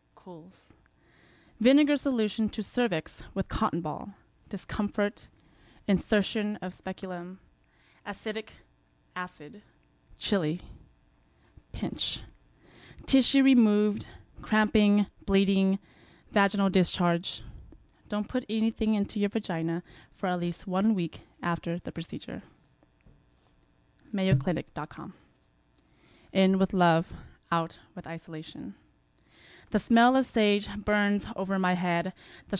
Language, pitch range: English, 170-205 Hz